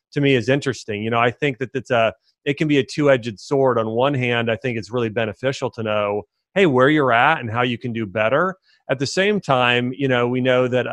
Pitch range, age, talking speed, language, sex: 115-145 Hz, 30-49, 255 wpm, English, male